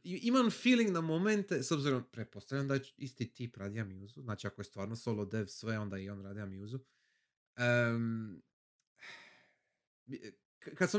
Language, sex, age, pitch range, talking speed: Croatian, male, 30-49, 115-160 Hz, 155 wpm